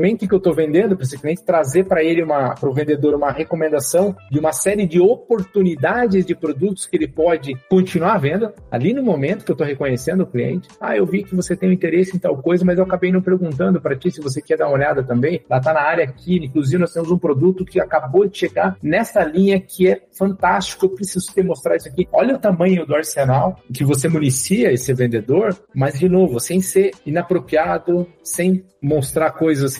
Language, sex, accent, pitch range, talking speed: Portuguese, male, Brazilian, 135-185 Hz, 215 wpm